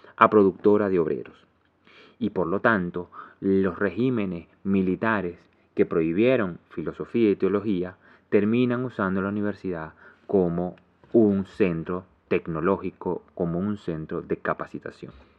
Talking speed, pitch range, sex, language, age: 115 wpm, 90-115 Hz, male, Spanish, 30-49